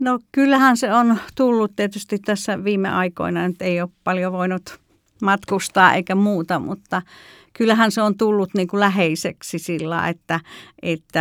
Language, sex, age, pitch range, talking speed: Finnish, female, 50-69, 170-200 Hz, 140 wpm